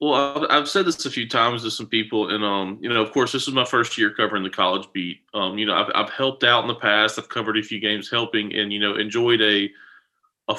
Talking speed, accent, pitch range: 265 wpm, American, 100-115 Hz